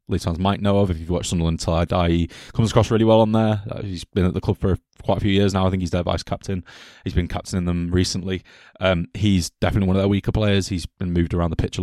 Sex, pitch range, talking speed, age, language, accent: male, 90-105 Hz, 285 wpm, 20-39, English, British